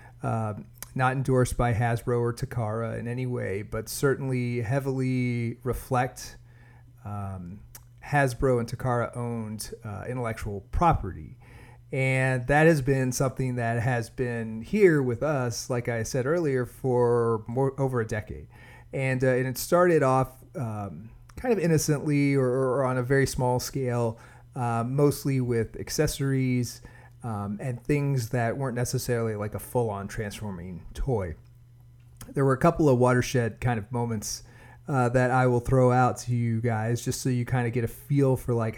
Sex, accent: male, American